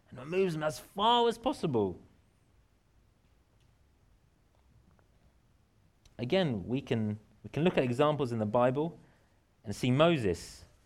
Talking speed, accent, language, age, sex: 110 wpm, British, English, 30-49, male